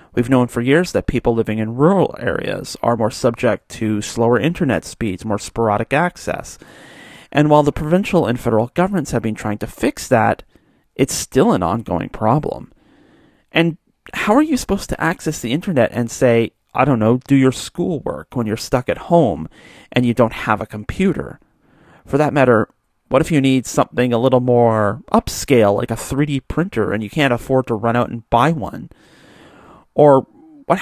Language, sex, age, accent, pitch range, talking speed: English, male, 40-59, American, 115-160 Hz, 185 wpm